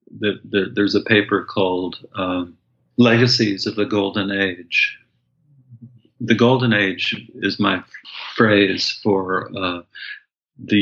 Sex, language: male, English